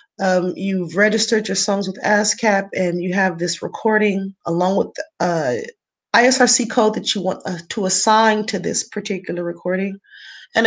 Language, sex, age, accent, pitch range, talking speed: English, female, 30-49, American, 185-225 Hz, 165 wpm